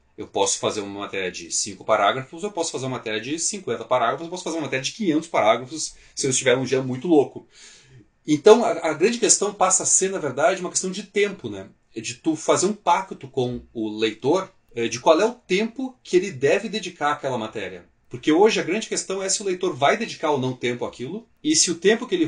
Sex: male